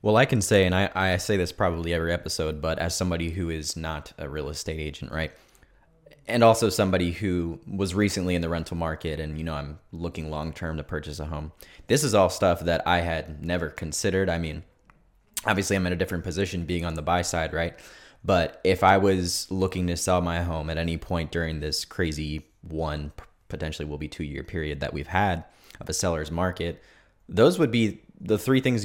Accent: American